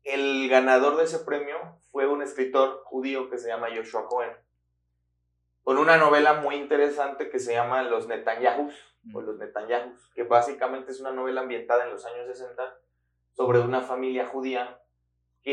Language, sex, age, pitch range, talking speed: Spanish, male, 30-49, 120-165 Hz, 160 wpm